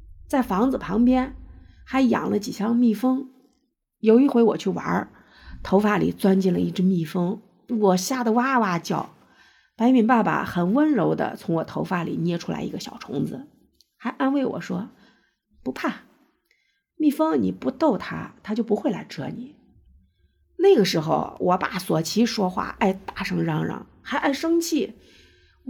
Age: 50-69